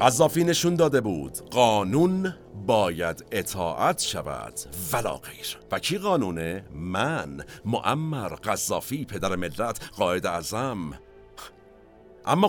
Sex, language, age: male, Persian, 50-69